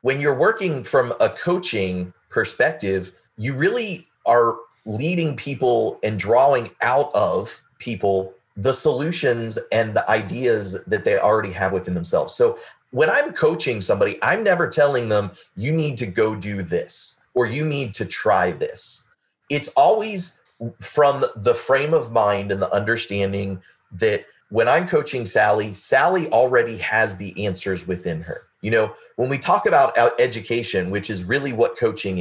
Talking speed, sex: 155 wpm, male